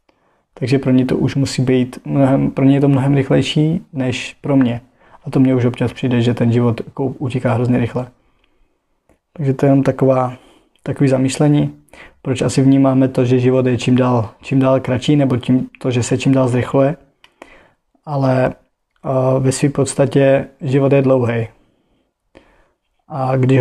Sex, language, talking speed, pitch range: male, Czech, 165 wpm, 125-140 Hz